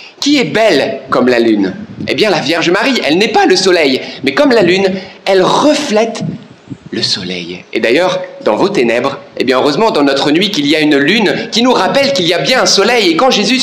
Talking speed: 230 wpm